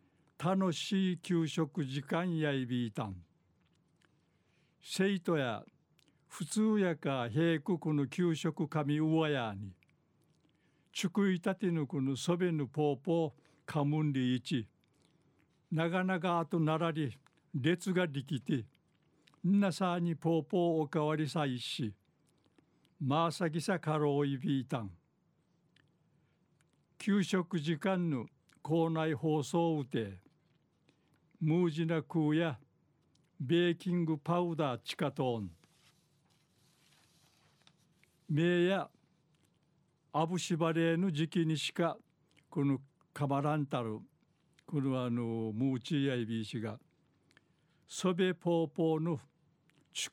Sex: male